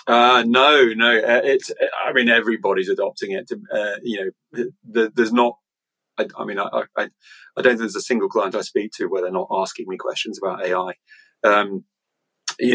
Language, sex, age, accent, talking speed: English, male, 30-49, British, 195 wpm